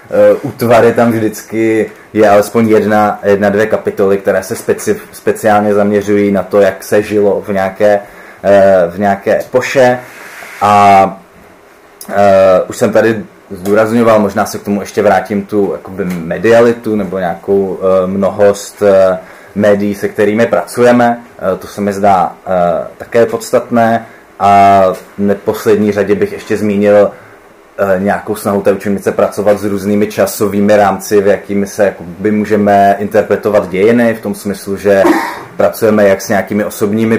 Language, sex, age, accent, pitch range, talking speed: Czech, male, 20-39, native, 95-105 Hz, 145 wpm